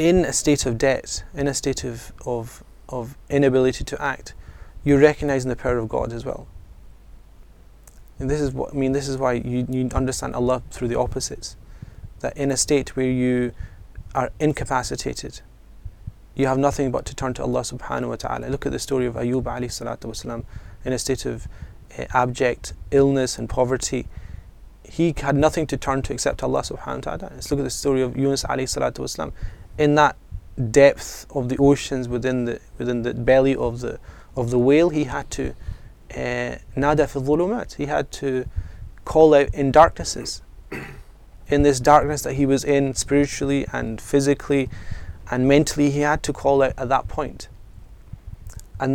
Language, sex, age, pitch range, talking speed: English, male, 20-39, 115-140 Hz, 175 wpm